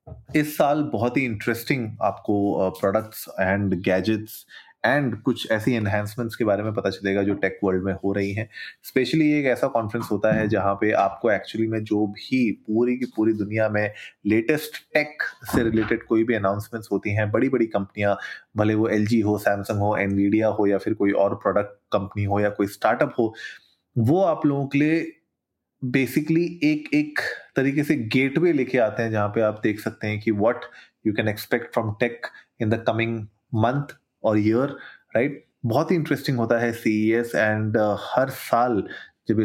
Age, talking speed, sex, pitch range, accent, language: 30-49, 185 wpm, male, 105-120 Hz, native, Hindi